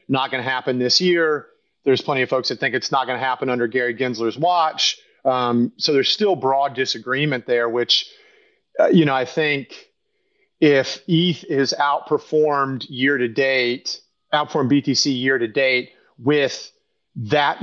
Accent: American